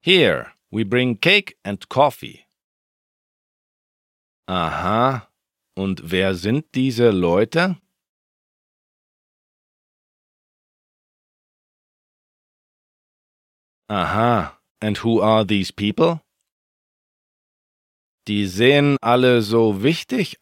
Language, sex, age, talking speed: German, male, 40-59, 70 wpm